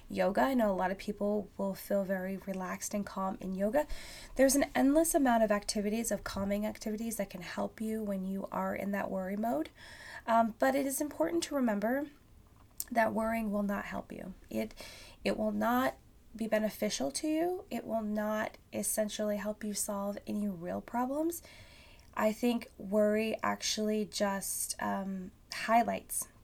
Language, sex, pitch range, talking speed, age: English, female, 195-235 Hz, 165 wpm, 20-39